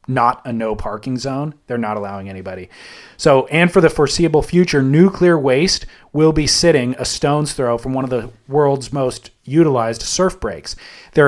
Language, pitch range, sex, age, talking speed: English, 125-160 Hz, male, 30-49, 170 wpm